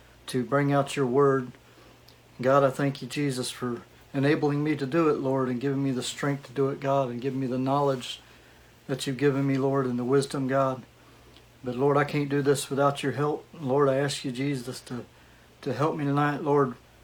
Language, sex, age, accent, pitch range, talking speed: English, male, 60-79, American, 130-145 Hz, 210 wpm